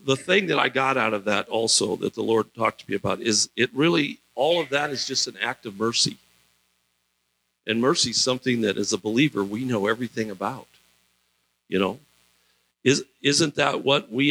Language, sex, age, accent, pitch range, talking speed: English, male, 50-69, American, 90-140 Hz, 195 wpm